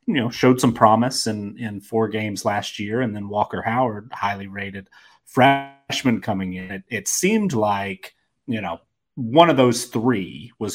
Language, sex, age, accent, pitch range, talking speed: English, male, 30-49, American, 95-115 Hz, 175 wpm